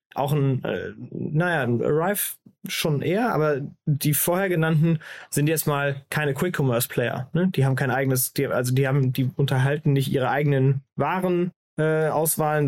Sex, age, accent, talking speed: male, 20-39, German, 155 wpm